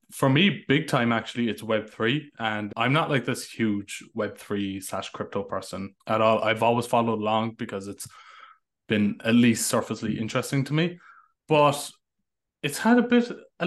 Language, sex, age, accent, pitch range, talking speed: English, male, 20-39, Irish, 110-140 Hz, 165 wpm